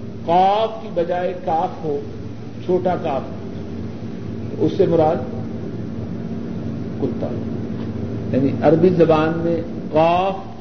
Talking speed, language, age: 90 wpm, Urdu, 50-69